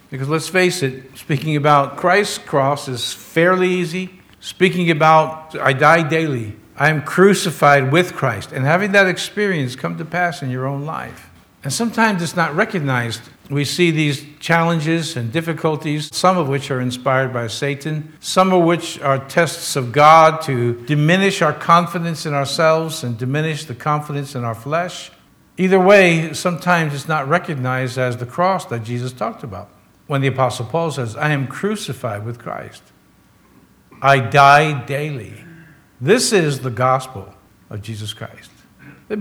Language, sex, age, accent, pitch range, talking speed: English, male, 60-79, American, 125-165 Hz, 160 wpm